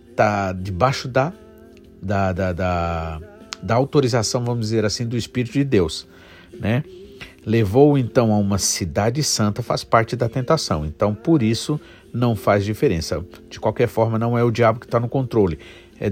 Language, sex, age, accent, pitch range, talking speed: Portuguese, male, 50-69, Brazilian, 100-140 Hz, 165 wpm